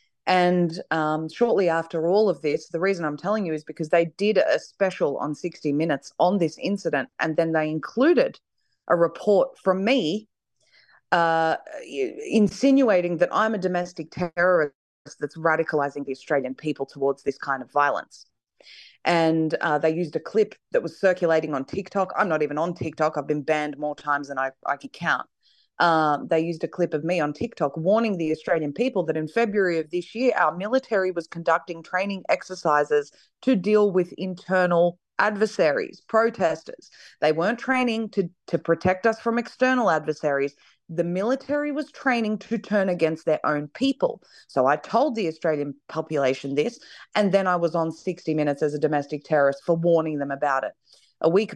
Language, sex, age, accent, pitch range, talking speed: English, female, 30-49, Australian, 155-200 Hz, 175 wpm